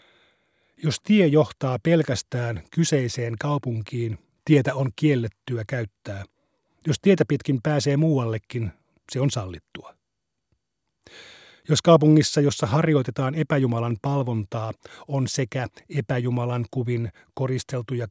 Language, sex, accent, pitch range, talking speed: Finnish, male, native, 120-145 Hz, 95 wpm